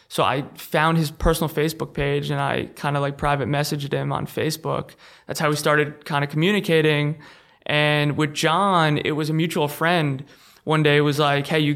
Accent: American